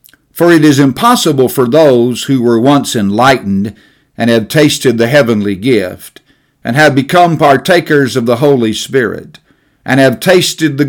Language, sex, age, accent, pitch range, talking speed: English, male, 50-69, American, 110-150 Hz, 155 wpm